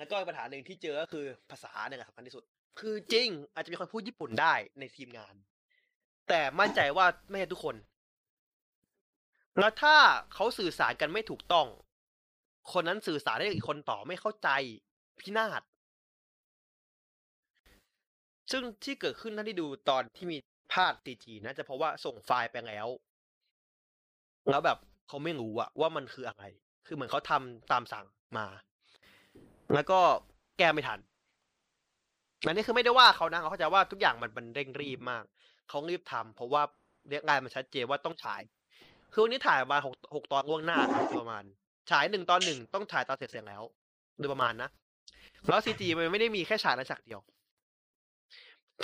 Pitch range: 130-195 Hz